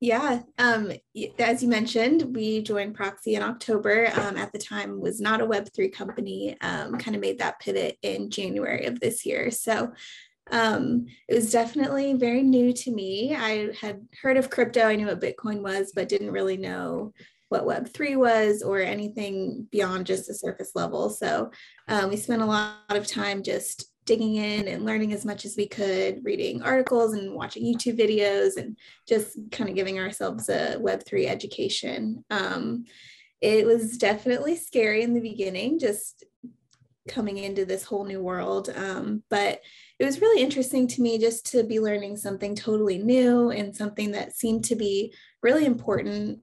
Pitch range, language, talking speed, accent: 205-240 Hz, English, 175 wpm, American